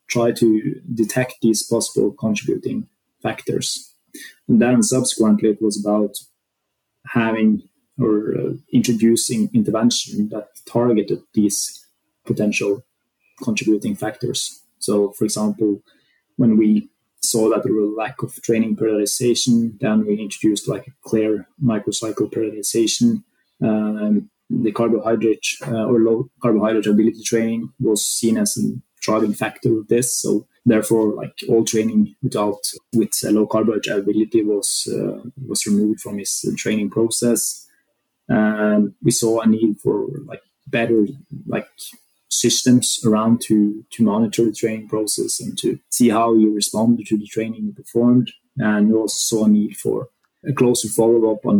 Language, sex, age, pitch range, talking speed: English, male, 20-39, 105-120 Hz, 145 wpm